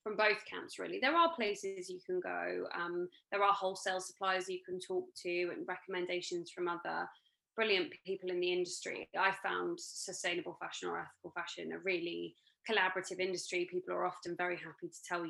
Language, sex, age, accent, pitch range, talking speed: English, female, 20-39, British, 170-210 Hz, 180 wpm